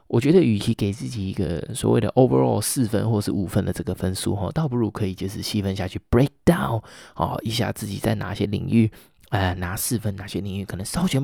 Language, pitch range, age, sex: Chinese, 95-115 Hz, 20-39, male